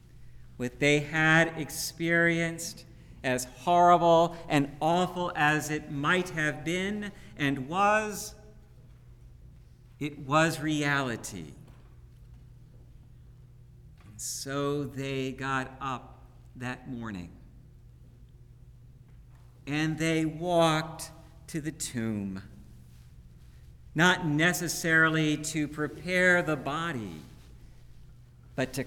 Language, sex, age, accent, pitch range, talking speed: English, male, 50-69, American, 125-170 Hz, 80 wpm